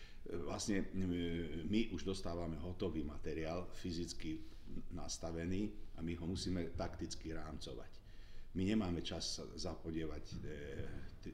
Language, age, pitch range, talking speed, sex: Slovak, 50-69, 80-95 Hz, 105 wpm, male